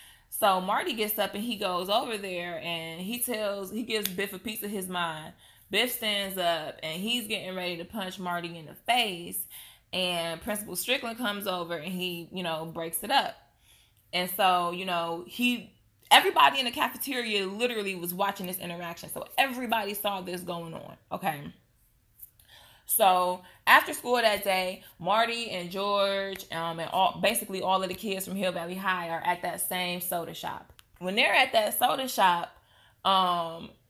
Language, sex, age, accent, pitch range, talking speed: English, female, 20-39, American, 175-225 Hz, 175 wpm